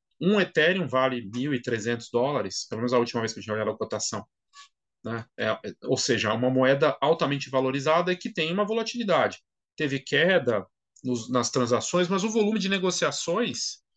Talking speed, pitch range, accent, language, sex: 170 wpm, 130-190 Hz, Brazilian, Portuguese, male